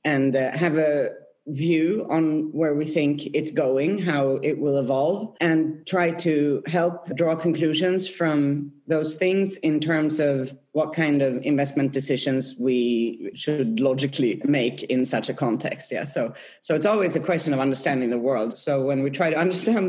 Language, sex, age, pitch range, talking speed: English, female, 40-59, 135-170 Hz, 170 wpm